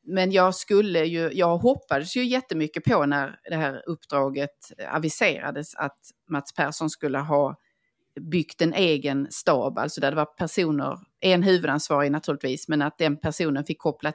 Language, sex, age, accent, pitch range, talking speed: Swedish, female, 30-49, native, 145-185 Hz, 150 wpm